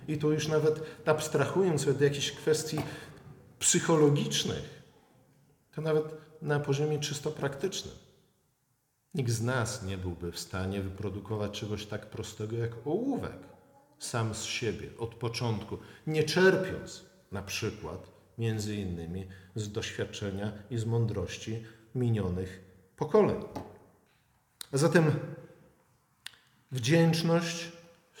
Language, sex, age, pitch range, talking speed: Polish, male, 50-69, 110-150 Hz, 105 wpm